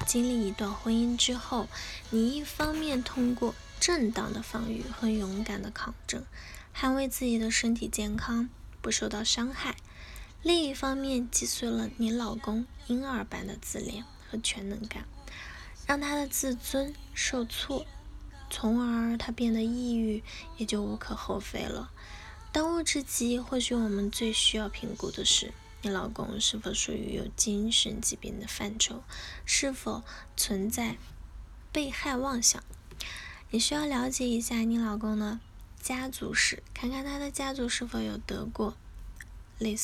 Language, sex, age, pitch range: Chinese, female, 10-29, 215-255 Hz